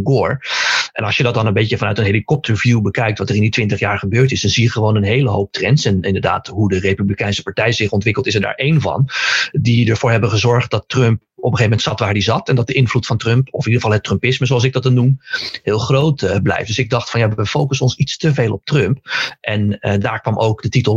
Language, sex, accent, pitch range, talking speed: Dutch, male, Dutch, 100-130 Hz, 270 wpm